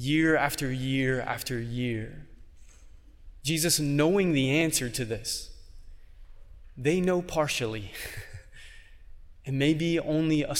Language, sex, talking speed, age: English, male, 100 wpm, 20-39